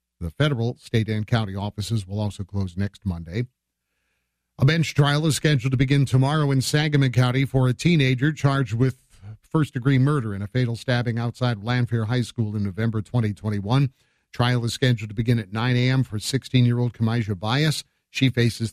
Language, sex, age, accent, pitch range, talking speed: English, male, 50-69, American, 105-135 Hz, 175 wpm